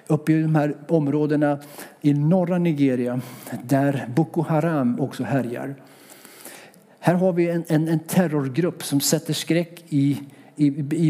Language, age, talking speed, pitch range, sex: Swedish, 60-79, 140 wpm, 140-175 Hz, male